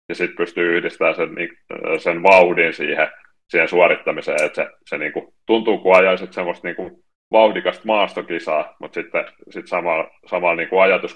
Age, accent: 30-49, native